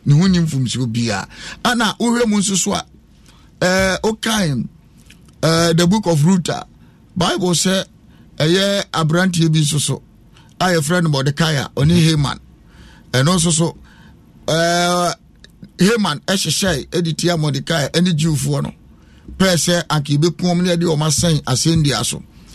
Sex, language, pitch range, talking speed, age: male, English, 160-210 Hz, 130 wpm, 50-69